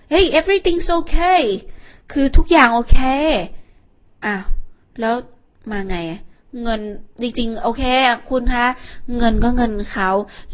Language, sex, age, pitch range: Thai, female, 20-39, 210-290 Hz